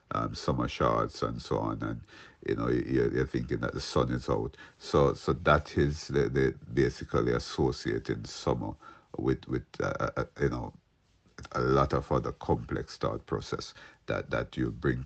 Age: 50-69